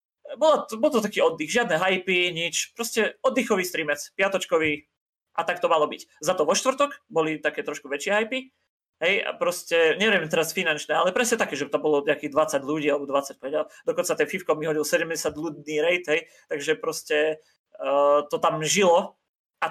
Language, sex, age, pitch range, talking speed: Czech, male, 30-49, 155-210 Hz, 180 wpm